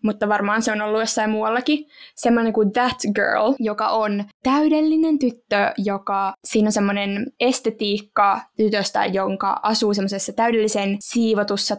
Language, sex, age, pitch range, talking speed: Finnish, female, 20-39, 200-245 Hz, 130 wpm